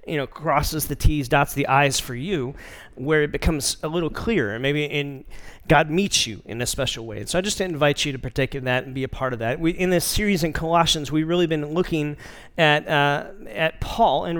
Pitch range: 145-180 Hz